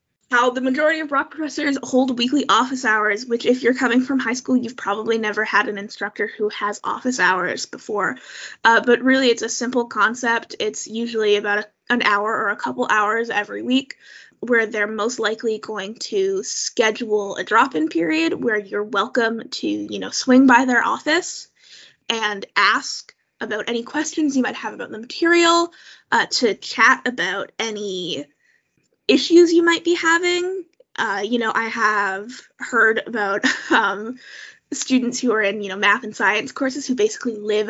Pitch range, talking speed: 210-275 Hz, 170 wpm